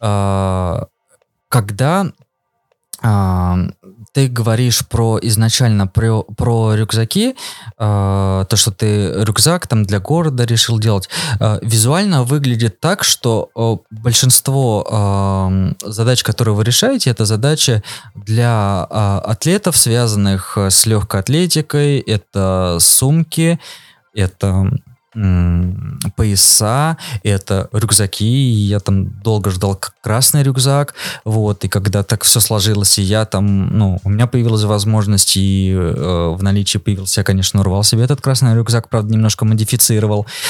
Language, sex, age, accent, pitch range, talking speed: Russian, male, 20-39, native, 100-125 Hz, 120 wpm